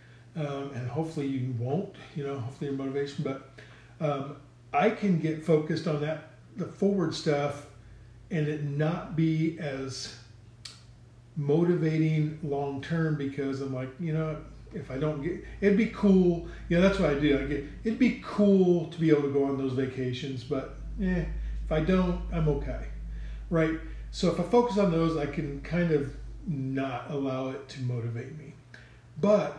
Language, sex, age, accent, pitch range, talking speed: English, male, 40-59, American, 120-160 Hz, 170 wpm